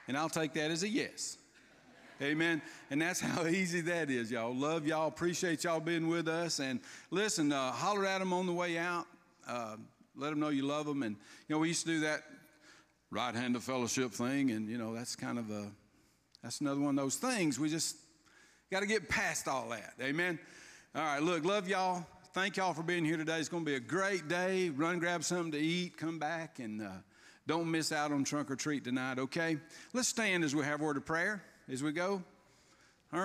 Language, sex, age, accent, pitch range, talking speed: English, male, 50-69, American, 140-175 Hz, 220 wpm